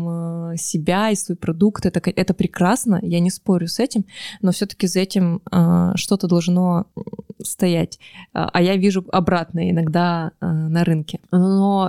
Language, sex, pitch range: Russian, female, 170-190 Hz